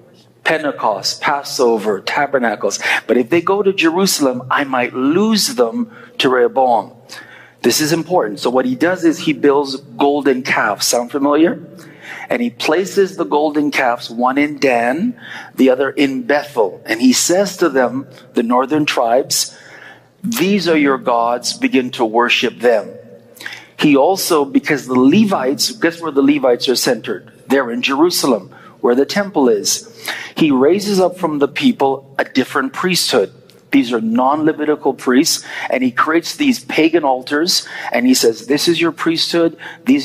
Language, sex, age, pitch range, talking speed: English, male, 40-59, 130-170 Hz, 155 wpm